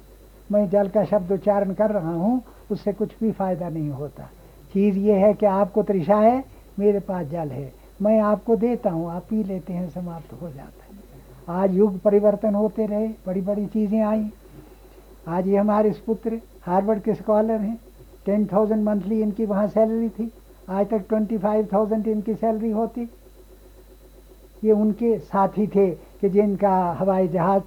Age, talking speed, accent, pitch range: 60-79, 165 wpm, native, 180-220 Hz